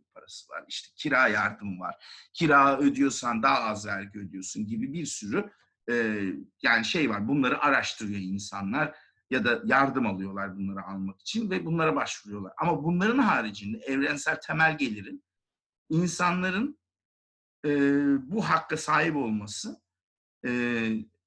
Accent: native